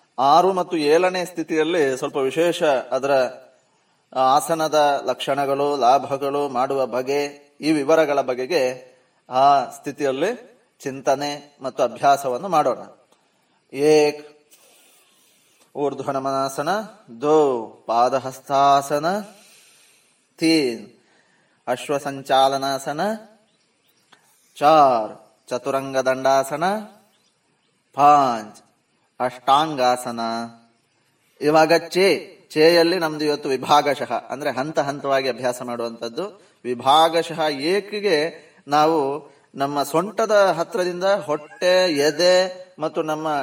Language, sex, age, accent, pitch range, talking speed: Kannada, male, 20-39, native, 135-170 Hz, 75 wpm